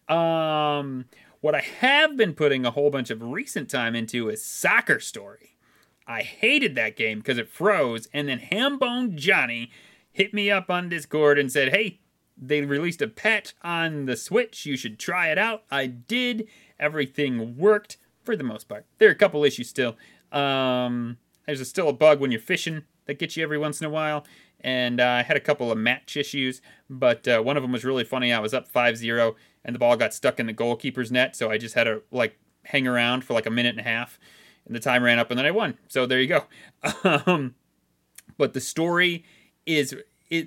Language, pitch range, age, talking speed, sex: English, 125-160 Hz, 30-49, 210 wpm, male